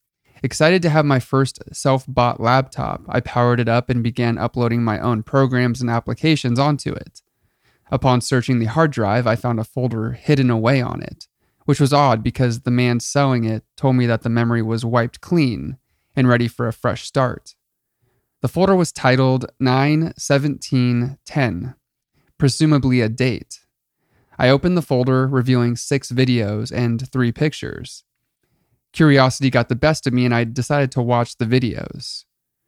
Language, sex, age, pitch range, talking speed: English, male, 30-49, 120-135 Hz, 160 wpm